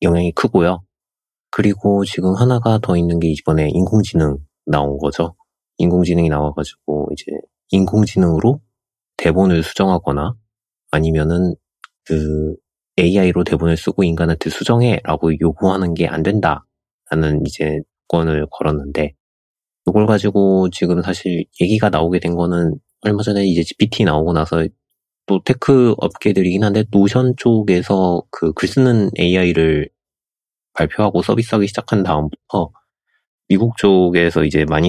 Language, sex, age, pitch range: Korean, male, 30-49, 80-100 Hz